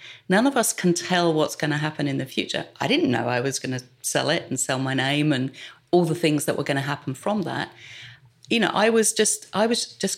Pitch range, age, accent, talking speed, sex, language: 135-170 Hz, 40-59, British, 260 wpm, female, English